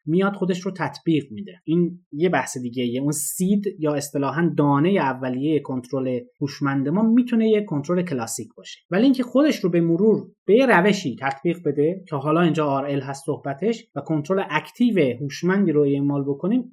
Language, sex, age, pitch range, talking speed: Persian, male, 30-49, 140-190 Hz, 165 wpm